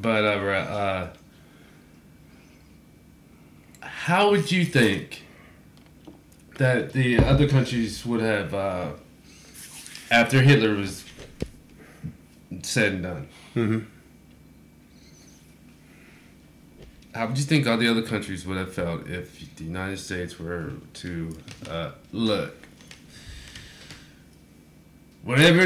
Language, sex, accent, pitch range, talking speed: English, male, American, 95-145 Hz, 95 wpm